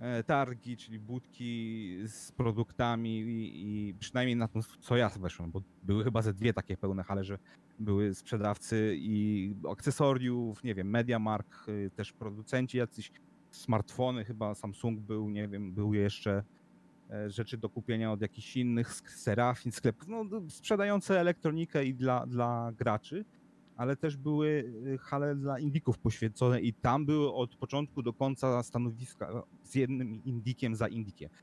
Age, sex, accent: 30-49, male, native